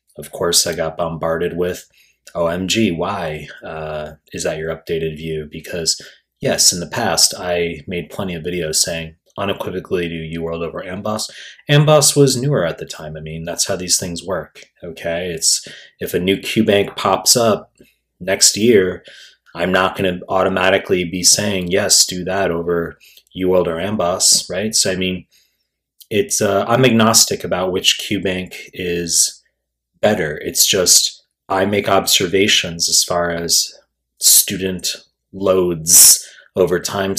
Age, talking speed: 30-49, 150 wpm